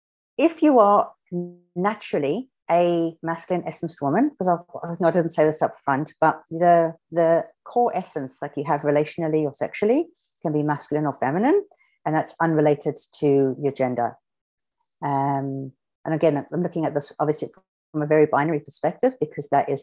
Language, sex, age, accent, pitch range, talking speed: English, female, 50-69, British, 140-180 Hz, 160 wpm